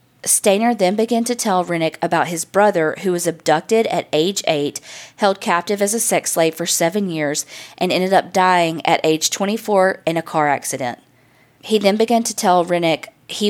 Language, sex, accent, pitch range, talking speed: English, female, American, 160-200 Hz, 185 wpm